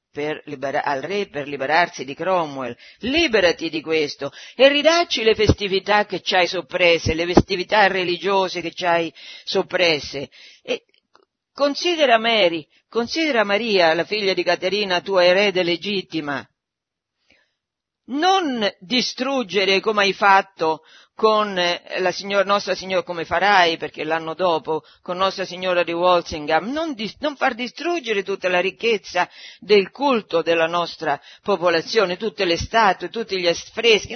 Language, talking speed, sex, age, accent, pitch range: Italian, 135 wpm, female, 50-69, native, 165-240 Hz